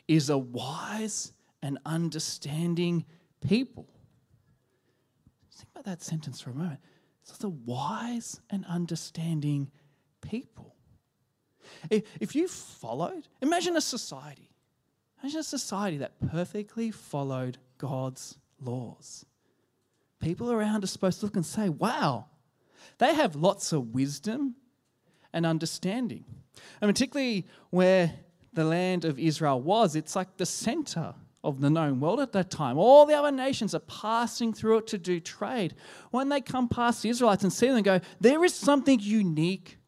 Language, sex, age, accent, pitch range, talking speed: English, male, 20-39, Australian, 150-230 Hz, 140 wpm